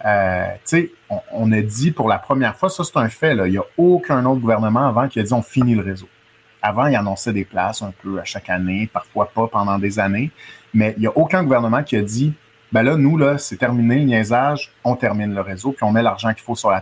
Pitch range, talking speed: 105-130 Hz, 255 wpm